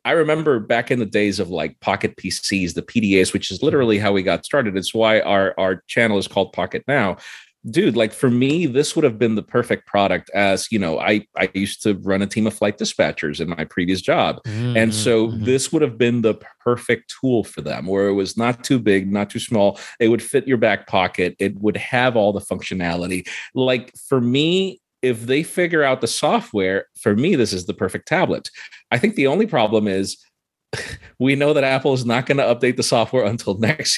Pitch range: 100-135 Hz